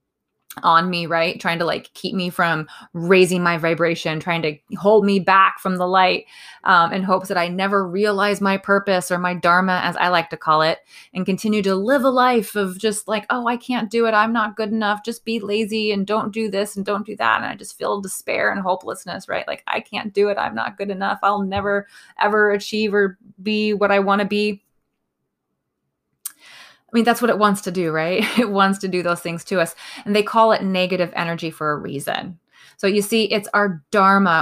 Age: 20-39